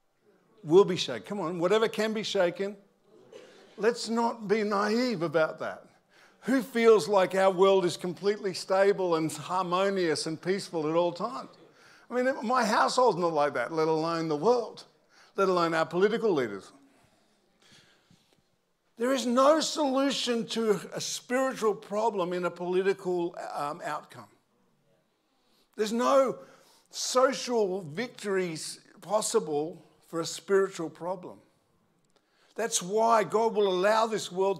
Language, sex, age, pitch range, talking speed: English, male, 50-69, 185-225 Hz, 130 wpm